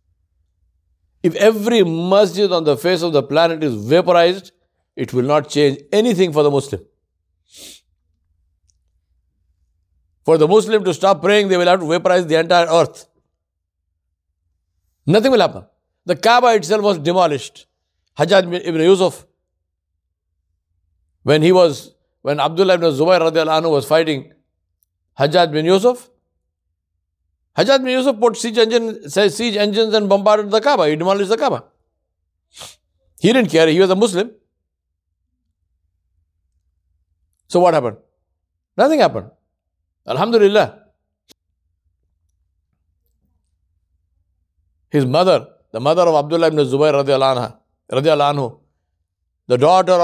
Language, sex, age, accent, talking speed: English, male, 60-79, Indian, 115 wpm